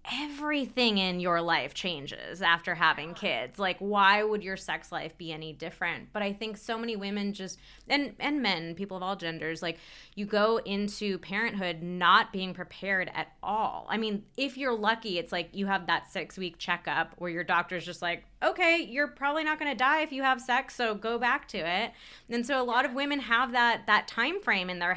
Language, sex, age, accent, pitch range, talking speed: English, female, 20-39, American, 185-245 Hz, 215 wpm